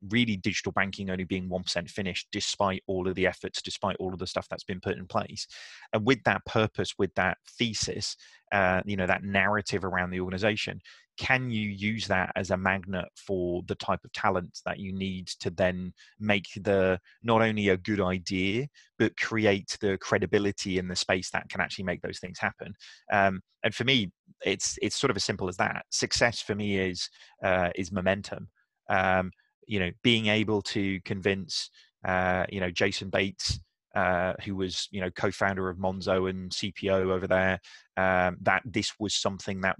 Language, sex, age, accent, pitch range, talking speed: English, male, 30-49, British, 95-105 Hz, 185 wpm